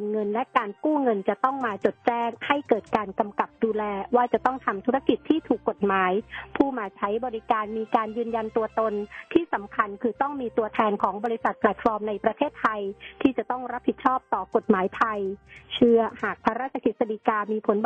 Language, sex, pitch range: Thai, female, 215-255 Hz